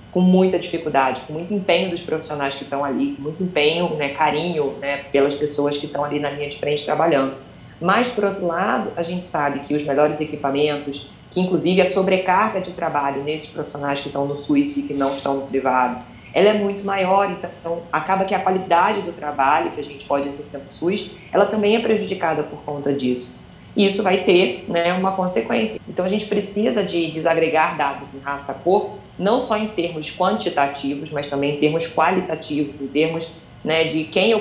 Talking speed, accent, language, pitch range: 195 wpm, Brazilian, Portuguese, 145-185 Hz